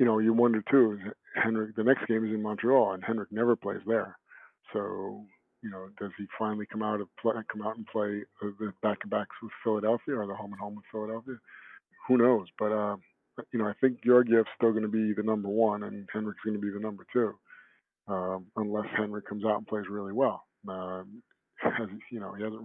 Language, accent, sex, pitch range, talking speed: English, American, male, 105-115 Hz, 200 wpm